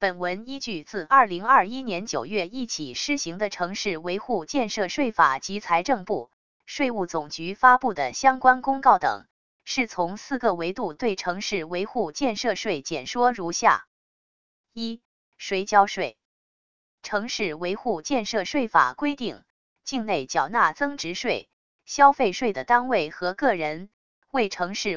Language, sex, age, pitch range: Chinese, female, 20-39, 180-250 Hz